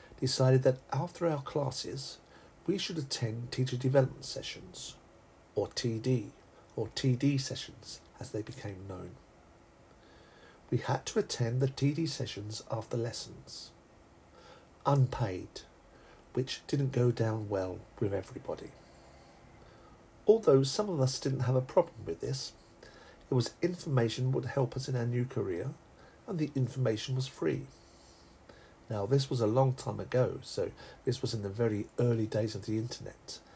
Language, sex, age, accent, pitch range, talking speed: English, male, 50-69, British, 105-135 Hz, 145 wpm